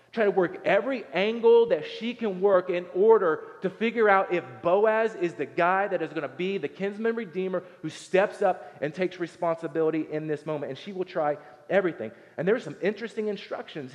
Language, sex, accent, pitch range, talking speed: English, male, American, 150-195 Hz, 200 wpm